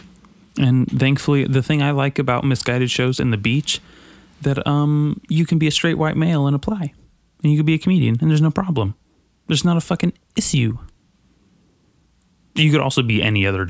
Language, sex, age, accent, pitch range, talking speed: English, male, 20-39, American, 100-145 Hz, 195 wpm